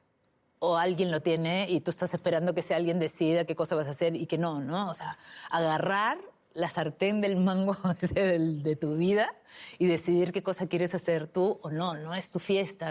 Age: 30-49